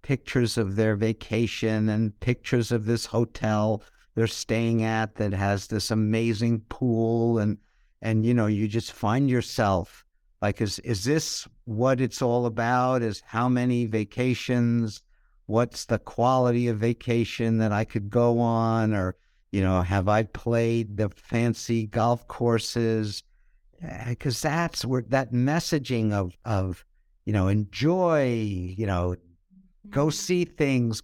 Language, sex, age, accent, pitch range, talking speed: English, male, 60-79, American, 95-120 Hz, 140 wpm